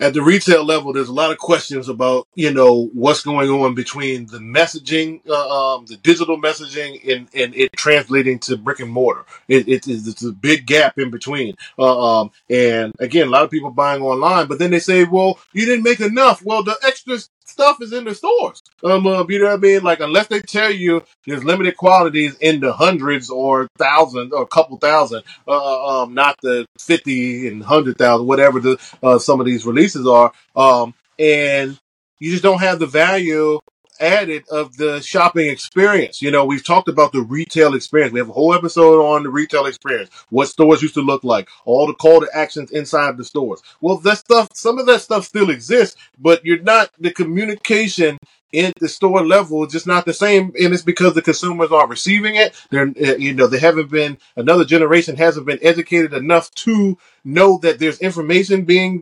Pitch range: 135-180 Hz